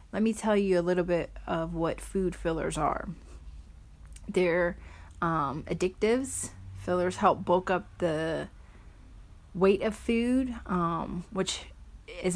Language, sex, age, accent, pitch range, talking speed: English, female, 30-49, American, 155-190 Hz, 125 wpm